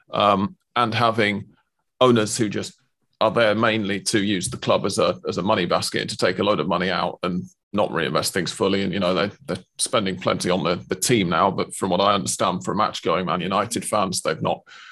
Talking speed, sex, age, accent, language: 230 wpm, male, 30-49, British, English